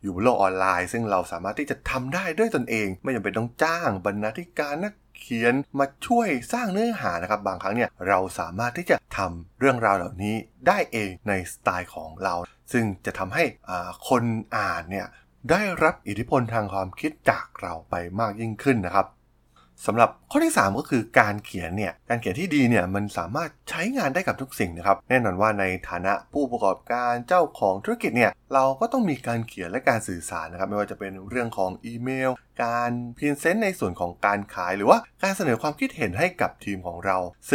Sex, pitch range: male, 95-135 Hz